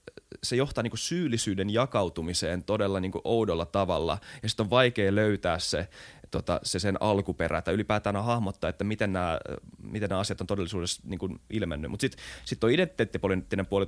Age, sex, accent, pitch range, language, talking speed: 20-39, male, native, 90-115 Hz, Finnish, 155 wpm